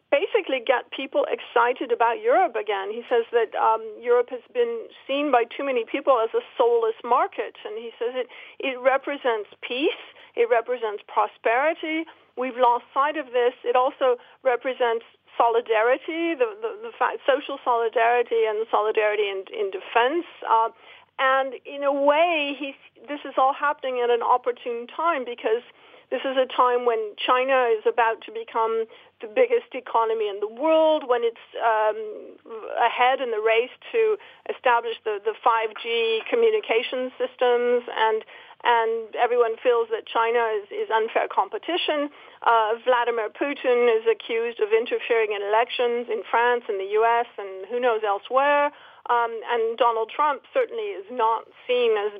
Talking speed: 155 wpm